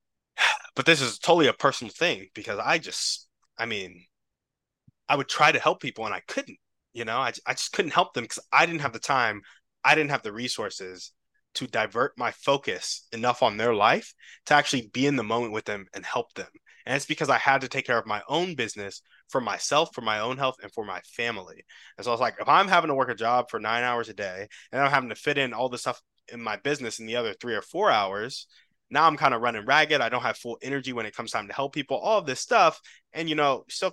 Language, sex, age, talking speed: English, male, 20-39, 255 wpm